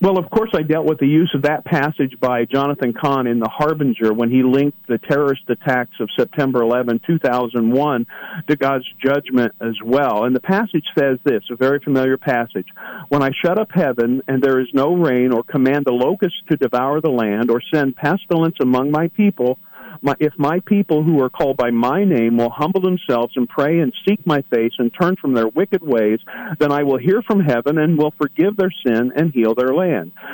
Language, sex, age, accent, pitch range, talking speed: English, male, 50-69, American, 125-165 Hz, 205 wpm